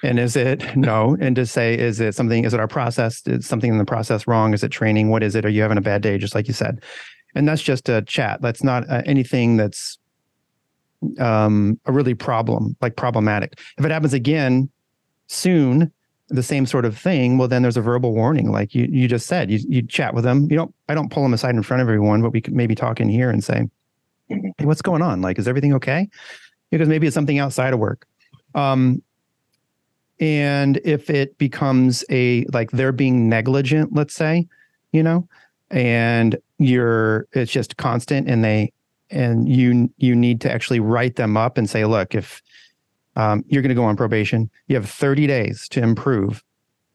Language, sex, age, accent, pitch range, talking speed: English, male, 40-59, American, 115-140 Hz, 205 wpm